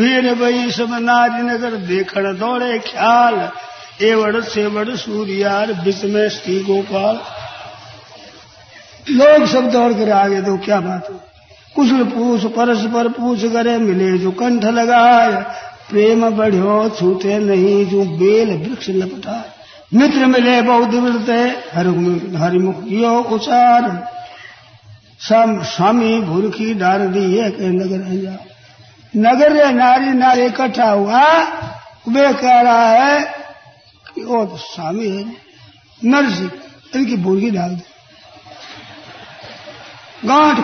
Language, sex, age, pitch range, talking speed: Hindi, male, 50-69, 200-245 Hz, 110 wpm